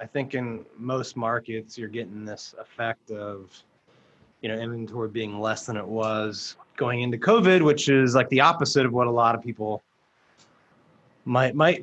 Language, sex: English, male